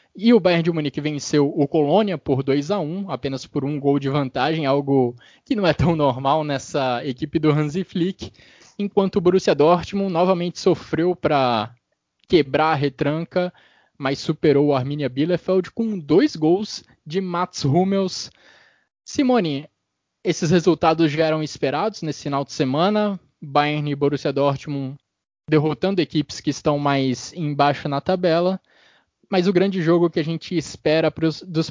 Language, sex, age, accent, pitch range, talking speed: Portuguese, male, 20-39, Brazilian, 145-175 Hz, 150 wpm